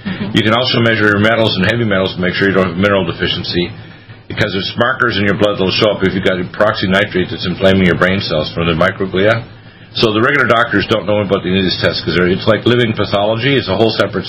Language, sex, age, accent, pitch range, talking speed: English, male, 50-69, American, 95-110 Hz, 245 wpm